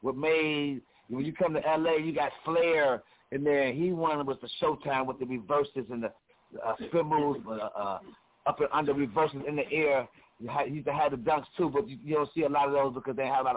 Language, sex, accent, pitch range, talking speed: English, male, American, 130-160 Hz, 245 wpm